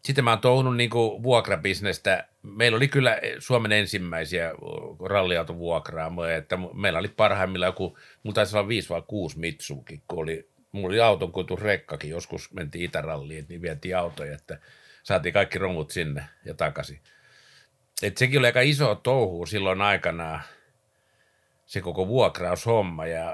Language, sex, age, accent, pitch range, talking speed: Finnish, male, 60-79, native, 90-120 Hz, 135 wpm